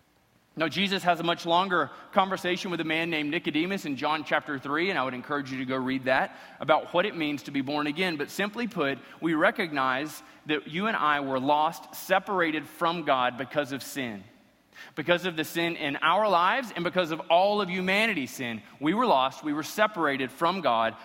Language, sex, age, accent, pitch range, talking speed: English, male, 30-49, American, 150-205 Hz, 205 wpm